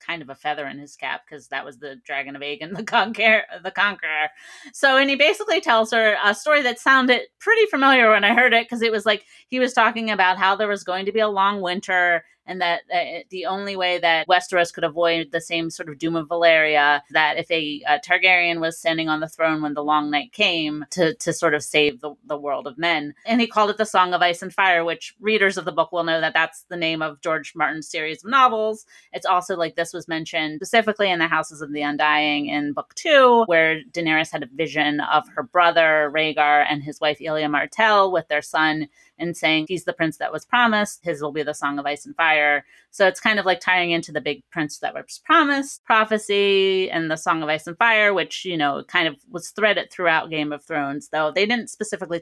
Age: 30-49